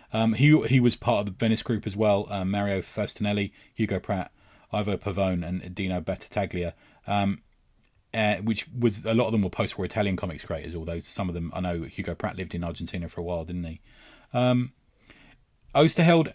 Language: English